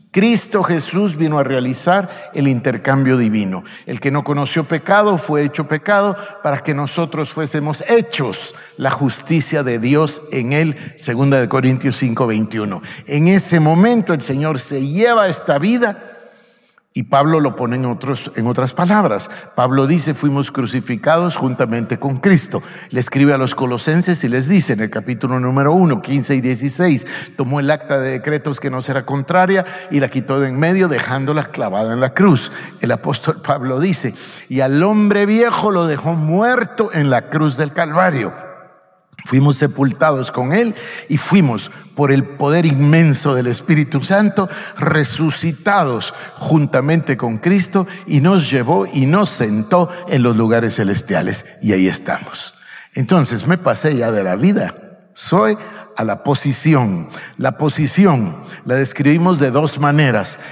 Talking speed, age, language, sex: 155 wpm, 50-69, Spanish, male